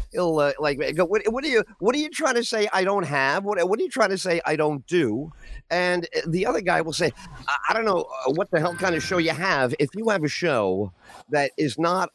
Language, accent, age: English, American, 50-69